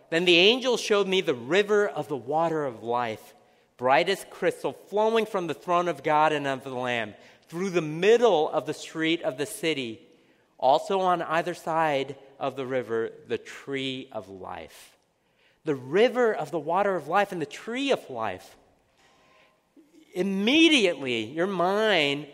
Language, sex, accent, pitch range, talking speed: English, male, American, 145-205 Hz, 160 wpm